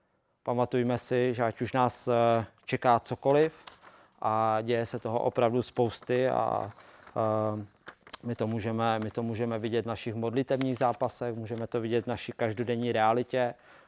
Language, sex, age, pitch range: Czech, male, 20-39, 110-125 Hz